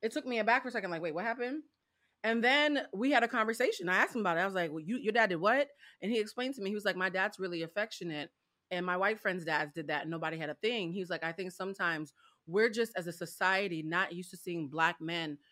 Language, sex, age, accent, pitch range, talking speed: English, female, 30-49, American, 175-225 Hz, 280 wpm